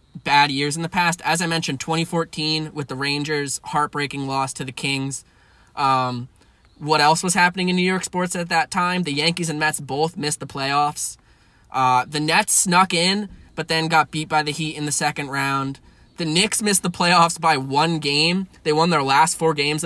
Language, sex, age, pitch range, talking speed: English, male, 20-39, 135-165 Hz, 200 wpm